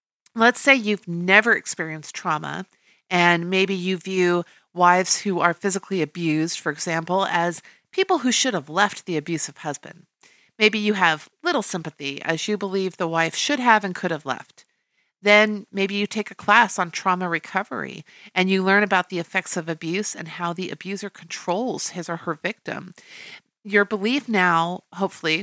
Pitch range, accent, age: 170-205 Hz, American, 40-59